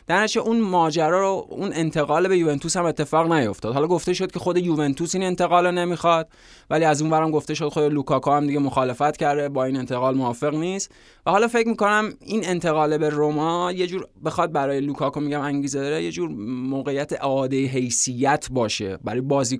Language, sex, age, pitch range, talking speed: Persian, male, 20-39, 135-165 Hz, 195 wpm